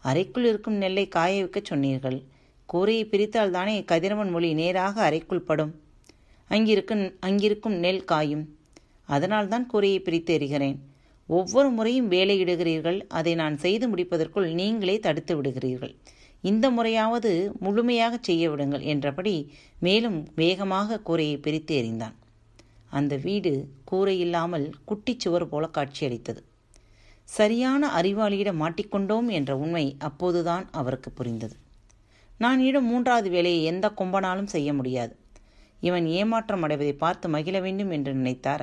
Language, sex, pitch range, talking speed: Tamil, female, 135-200 Hz, 115 wpm